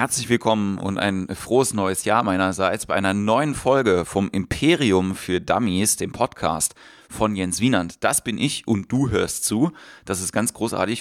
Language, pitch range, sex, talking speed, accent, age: German, 95-115 Hz, male, 175 wpm, German, 30-49